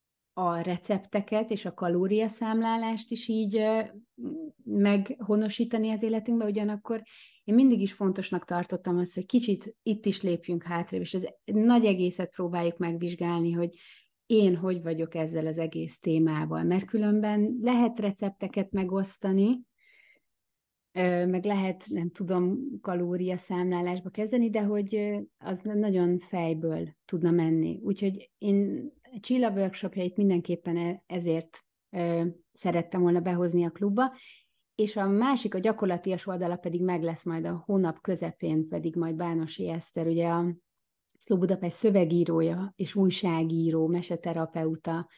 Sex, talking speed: female, 125 wpm